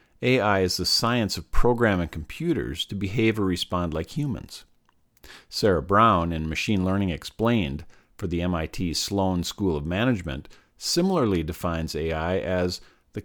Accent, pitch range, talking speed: American, 85-115 Hz, 140 wpm